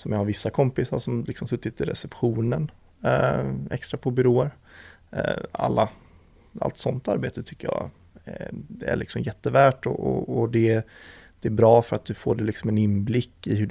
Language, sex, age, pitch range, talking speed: Swedish, male, 30-49, 105-120 Hz, 190 wpm